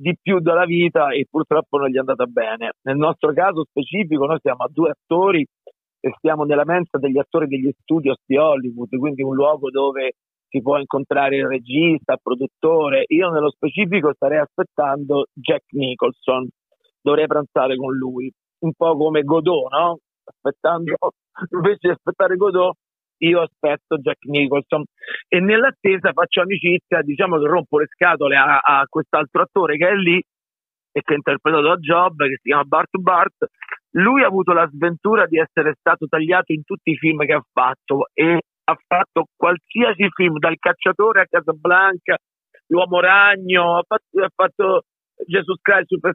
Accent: native